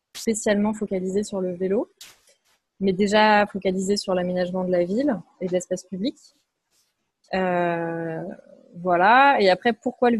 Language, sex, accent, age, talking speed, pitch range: French, female, French, 20-39, 135 wpm, 185-225 Hz